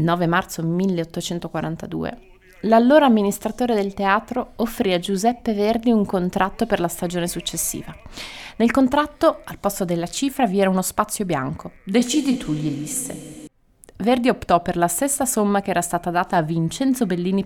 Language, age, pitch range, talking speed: Italian, 30-49, 175-235 Hz, 155 wpm